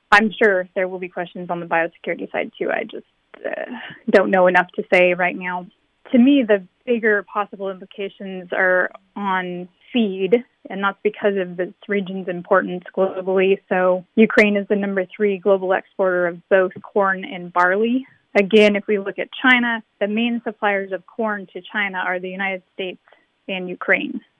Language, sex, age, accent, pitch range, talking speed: English, female, 20-39, American, 185-215 Hz, 170 wpm